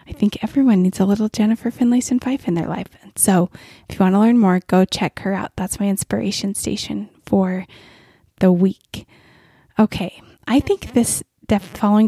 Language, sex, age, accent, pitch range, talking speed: English, female, 20-39, American, 185-260 Hz, 175 wpm